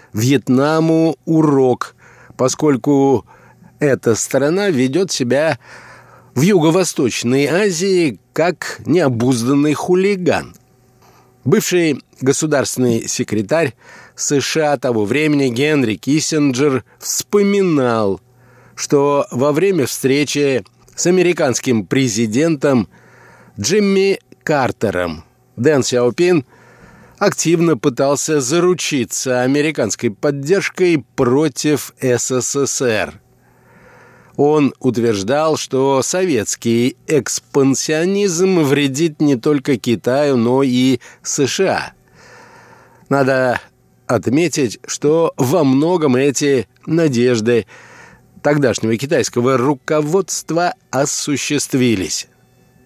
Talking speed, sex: 70 wpm, male